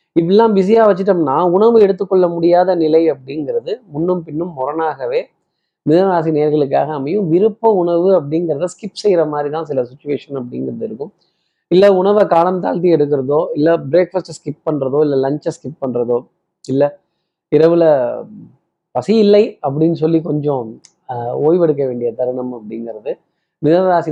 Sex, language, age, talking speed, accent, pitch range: male, Tamil, 20-39, 120 wpm, native, 140-180 Hz